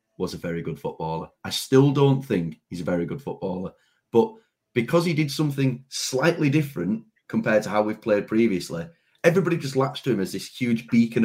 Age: 30-49